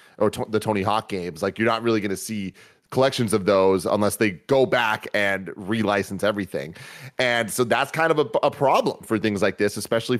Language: English